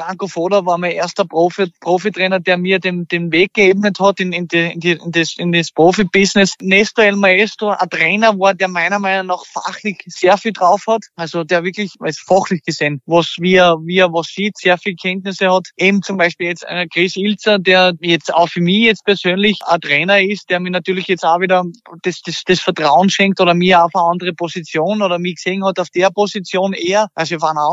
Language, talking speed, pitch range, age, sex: German, 210 wpm, 175-200 Hz, 20-39, male